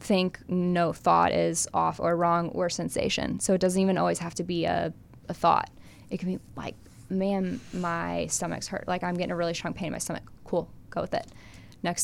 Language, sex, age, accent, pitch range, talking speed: English, female, 10-29, American, 165-195 Hz, 215 wpm